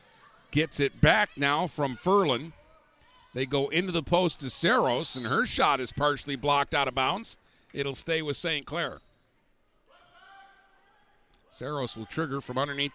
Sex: male